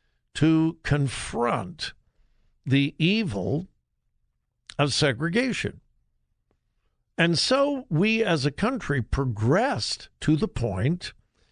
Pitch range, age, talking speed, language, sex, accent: 145-235 Hz, 60-79, 85 wpm, English, male, American